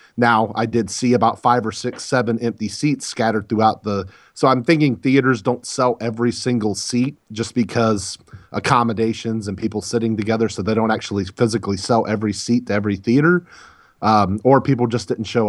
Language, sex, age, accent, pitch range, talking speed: English, male, 40-59, American, 105-125 Hz, 180 wpm